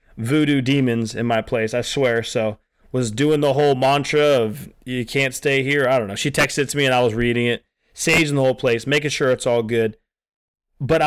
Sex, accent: male, American